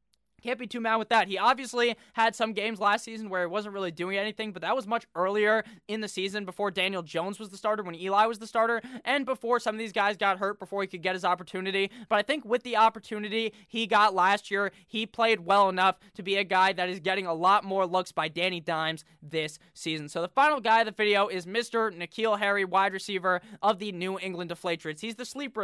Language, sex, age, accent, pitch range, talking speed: English, male, 20-39, American, 190-230 Hz, 240 wpm